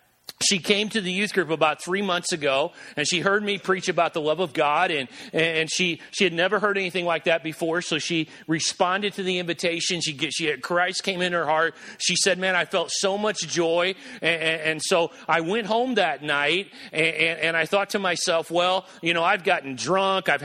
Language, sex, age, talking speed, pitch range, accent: English, male, 40-59, 225 wpm, 165-195 Hz, American